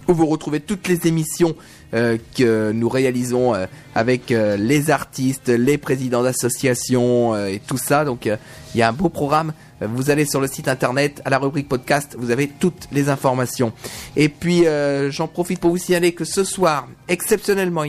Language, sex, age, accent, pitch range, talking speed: French, male, 30-49, French, 125-165 Hz, 190 wpm